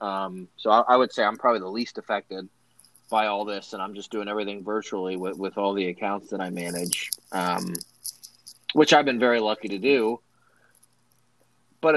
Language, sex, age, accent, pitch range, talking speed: English, male, 30-49, American, 105-135 Hz, 185 wpm